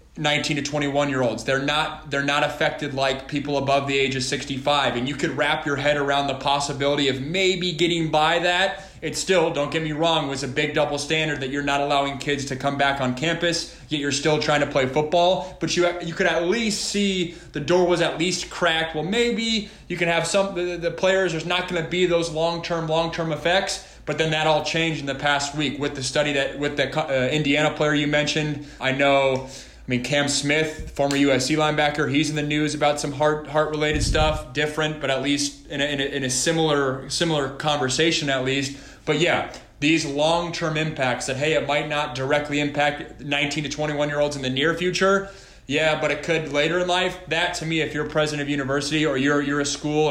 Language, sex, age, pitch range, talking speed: English, male, 20-39, 140-165 Hz, 220 wpm